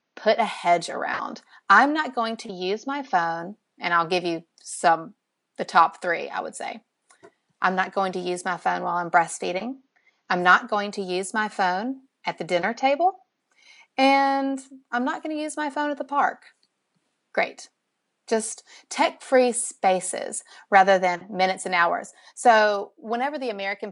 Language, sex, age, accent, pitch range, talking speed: English, female, 30-49, American, 175-240 Hz, 170 wpm